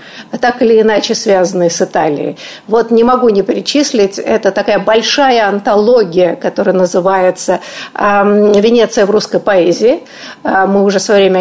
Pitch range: 190-255 Hz